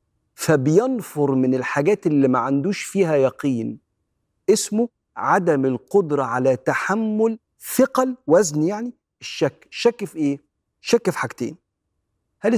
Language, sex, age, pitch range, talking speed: Arabic, male, 40-59, 130-180 Hz, 115 wpm